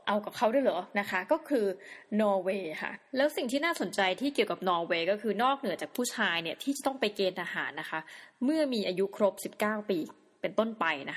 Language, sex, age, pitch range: Thai, female, 20-39, 190-255 Hz